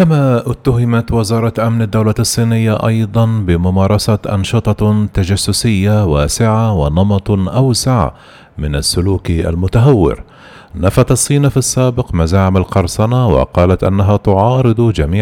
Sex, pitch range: male, 95-115 Hz